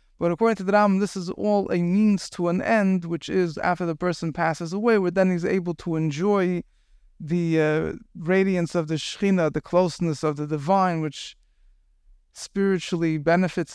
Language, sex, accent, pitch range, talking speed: English, male, American, 160-185 Hz, 175 wpm